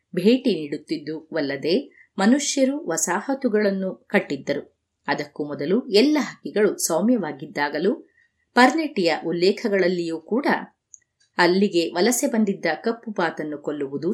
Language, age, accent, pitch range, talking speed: Kannada, 30-49, native, 160-250 Hz, 85 wpm